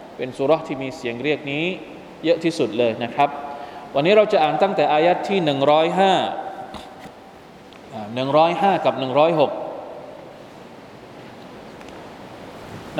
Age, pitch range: 20-39, 135-160 Hz